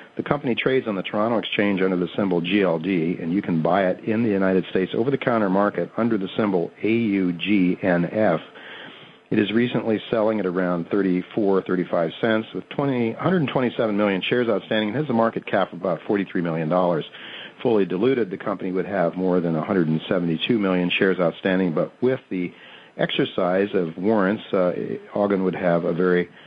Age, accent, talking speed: 50-69, American, 170 wpm